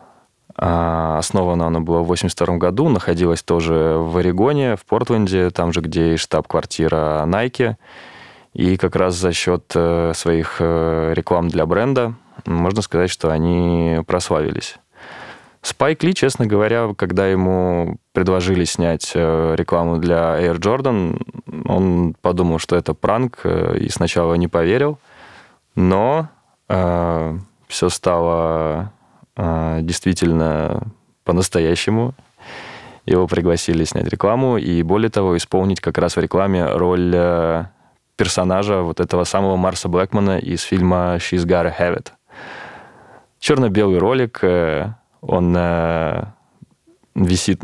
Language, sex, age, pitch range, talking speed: Russian, male, 20-39, 85-95 Hz, 110 wpm